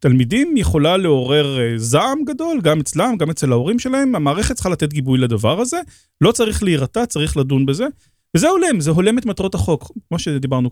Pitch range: 130-175 Hz